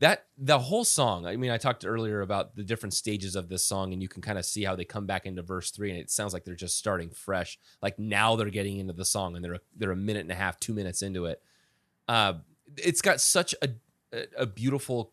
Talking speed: 255 wpm